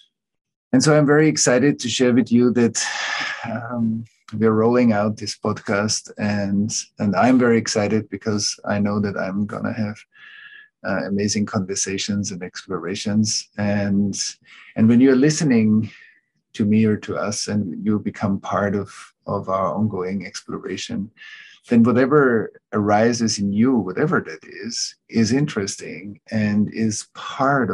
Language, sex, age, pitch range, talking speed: English, male, 50-69, 100-115 Hz, 145 wpm